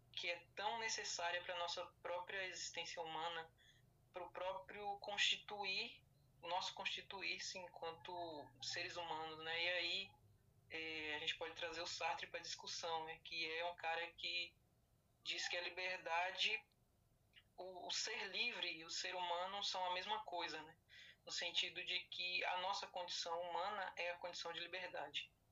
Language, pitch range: Portuguese, 160-185 Hz